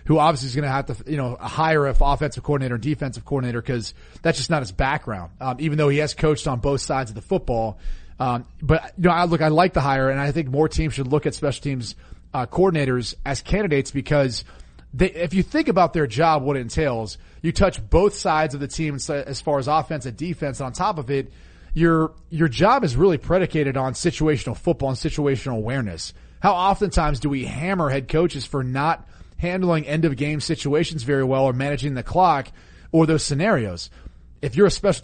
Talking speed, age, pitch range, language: 210 wpm, 30-49, 130-160 Hz, English